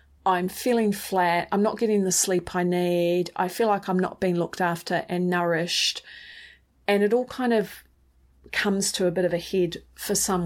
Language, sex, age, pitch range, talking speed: English, female, 30-49, 175-225 Hz, 195 wpm